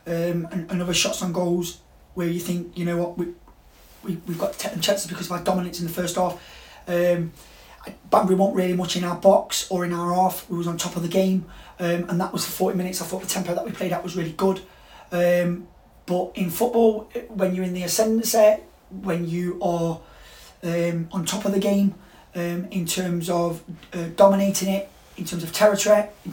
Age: 20-39